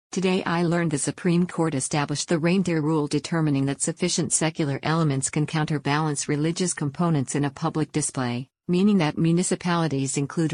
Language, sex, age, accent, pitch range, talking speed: English, female, 50-69, American, 145-165 Hz, 155 wpm